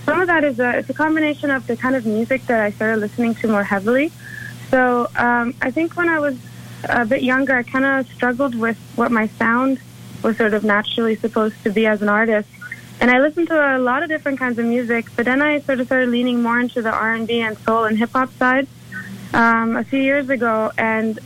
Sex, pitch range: female, 220-260 Hz